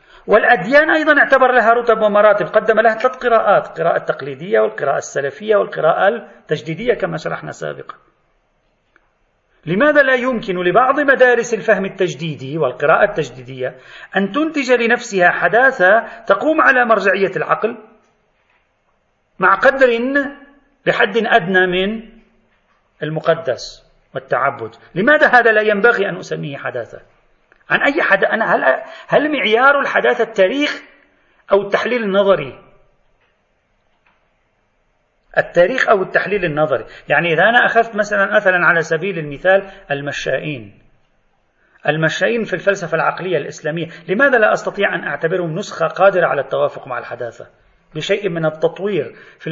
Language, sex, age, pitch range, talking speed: Arabic, male, 40-59, 160-235 Hz, 115 wpm